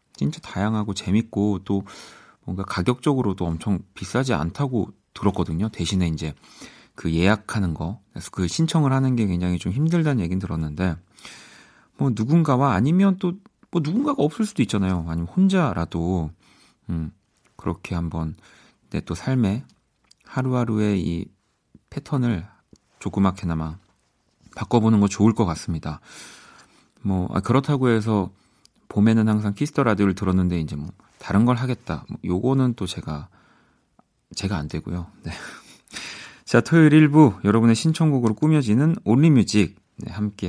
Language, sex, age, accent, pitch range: Korean, male, 40-59, native, 90-125 Hz